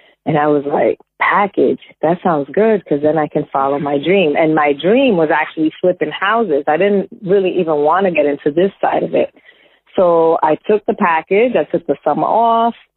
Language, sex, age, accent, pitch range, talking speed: English, female, 30-49, American, 150-185 Hz, 205 wpm